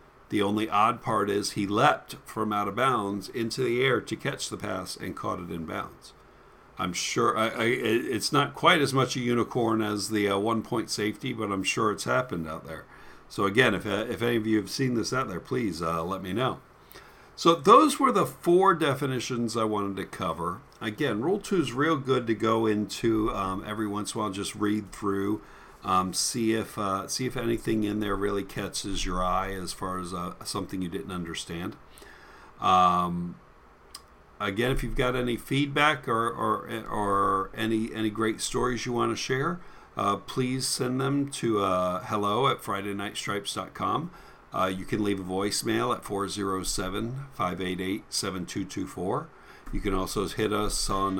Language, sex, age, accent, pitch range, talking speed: English, male, 50-69, American, 100-120 Hz, 180 wpm